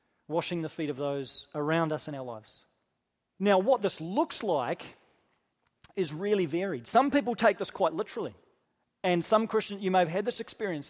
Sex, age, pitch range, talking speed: male, 40-59, 160-215 Hz, 180 wpm